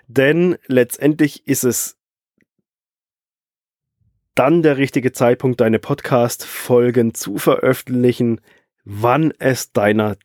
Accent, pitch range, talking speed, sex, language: German, 110-135 Hz, 90 wpm, male, German